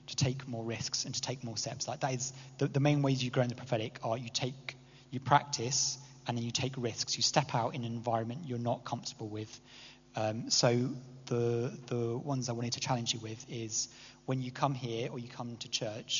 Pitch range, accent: 115-130 Hz, British